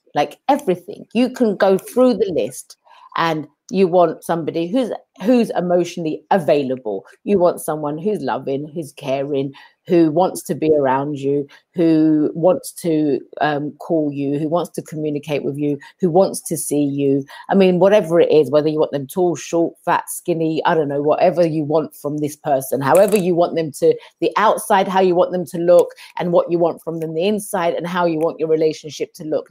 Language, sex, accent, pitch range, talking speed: English, female, British, 160-240 Hz, 195 wpm